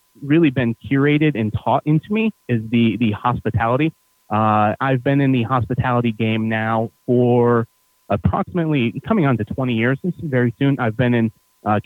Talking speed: 170 wpm